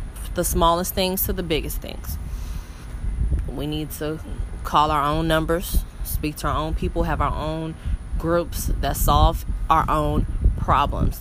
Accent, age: American, 20-39